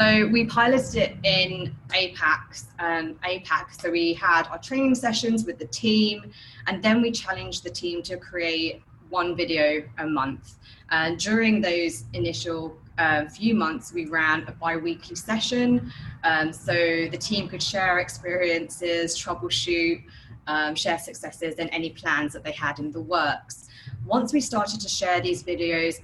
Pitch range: 145-185 Hz